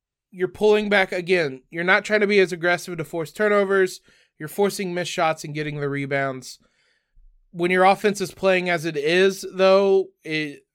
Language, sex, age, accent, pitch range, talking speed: English, male, 20-39, American, 160-195 Hz, 180 wpm